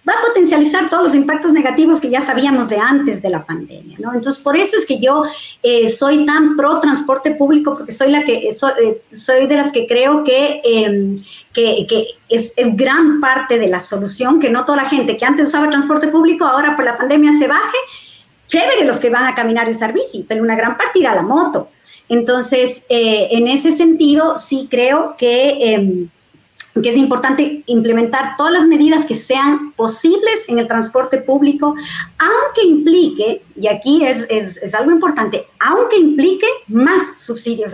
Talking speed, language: 190 wpm, Spanish